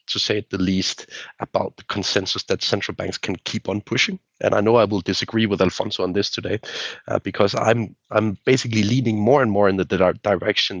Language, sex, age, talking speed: English, male, 30-49, 215 wpm